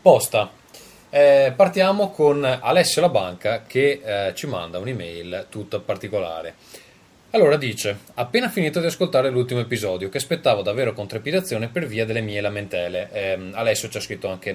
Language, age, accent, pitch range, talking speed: Italian, 20-39, native, 100-140 Hz, 155 wpm